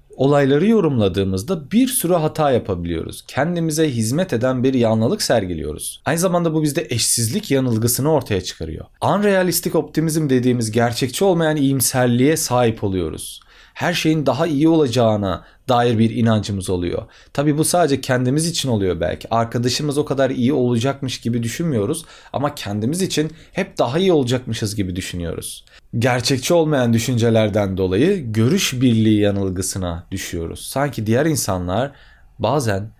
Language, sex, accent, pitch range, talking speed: Turkish, male, native, 110-155 Hz, 130 wpm